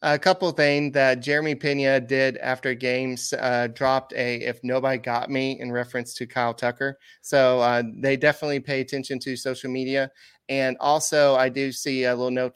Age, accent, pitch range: 30-49, American, 120-135 Hz